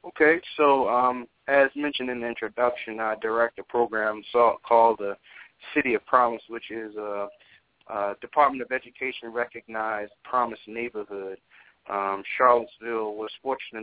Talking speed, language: 135 wpm, English